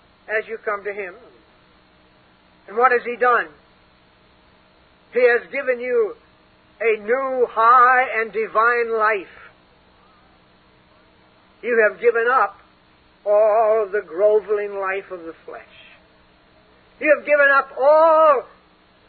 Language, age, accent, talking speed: English, 60-79, American, 115 wpm